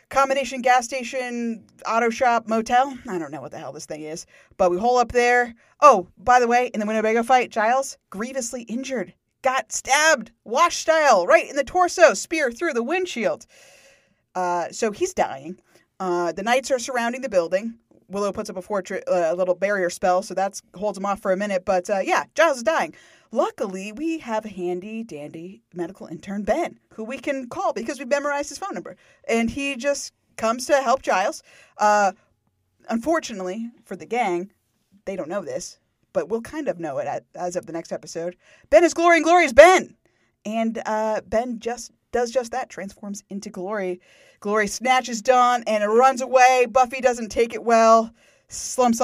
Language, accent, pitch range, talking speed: English, American, 195-265 Hz, 190 wpm